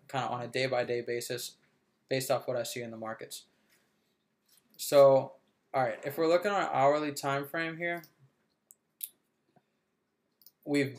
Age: 20-39